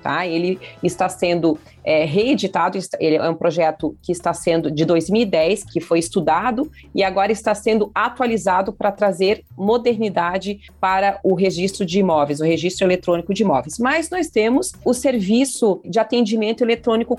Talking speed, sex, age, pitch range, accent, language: 145 wpm, female, 40-59, 175-215 Hz, Brazilian, Portuguese